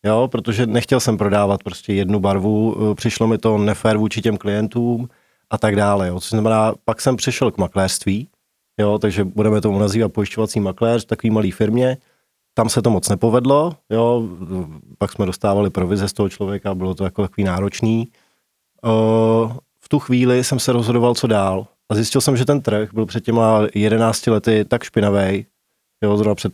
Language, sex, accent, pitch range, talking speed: Czech, male, native, 105-120 Hz, 175 wpm